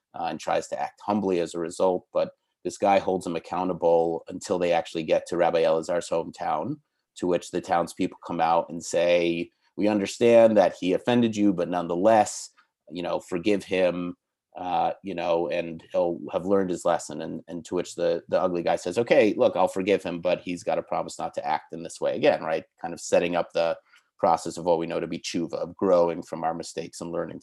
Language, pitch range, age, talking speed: English, 90-105 Hz, 30-49, 215 wpm